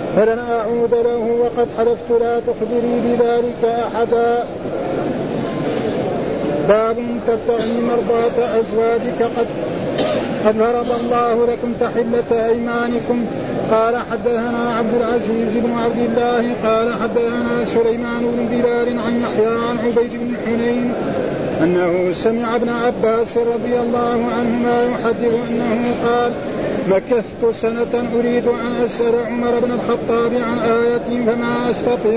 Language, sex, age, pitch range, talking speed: Arabic, male, 50-69, 230-240 Hz, 110 wpm